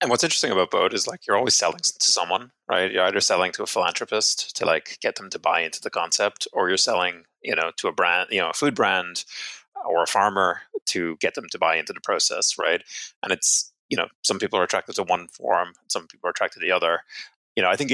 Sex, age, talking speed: male, 30-49, 250 wpm